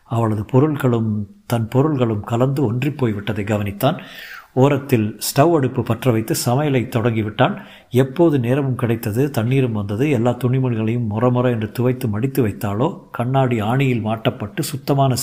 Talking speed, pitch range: 120 wpm, 110-135 Hz